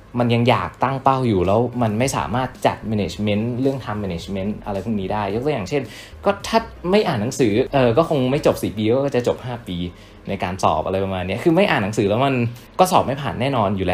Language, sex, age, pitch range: Thai, male, 20-39, 100-135 Hz